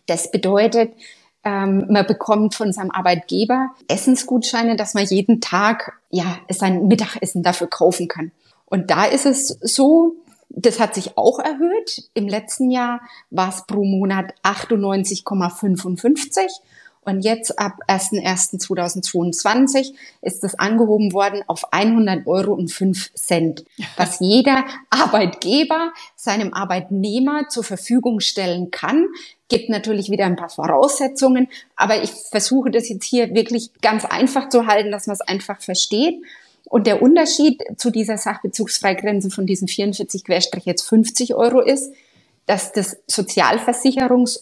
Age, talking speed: 30-49, 125 wpm